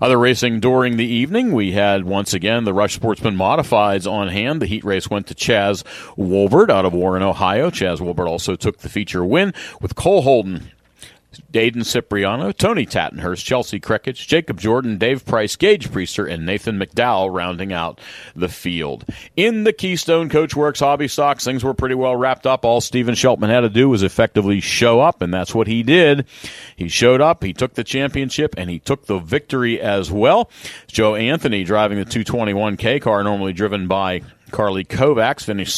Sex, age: male, 40-59